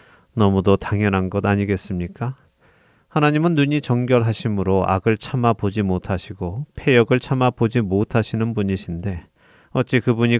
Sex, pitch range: male, 100-125 Hz